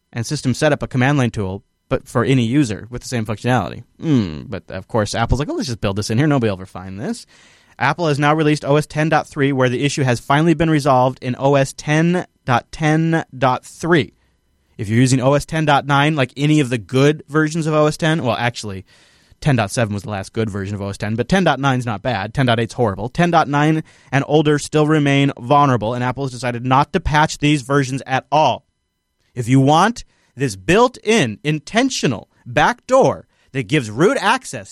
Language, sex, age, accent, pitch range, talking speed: English, male, 30-49, American, 115-150 Hz, 190 wpm